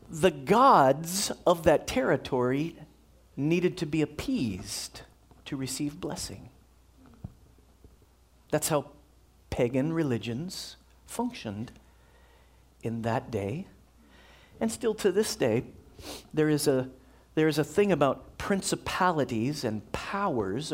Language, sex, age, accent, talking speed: English, male, 40-59, American, 105 wpm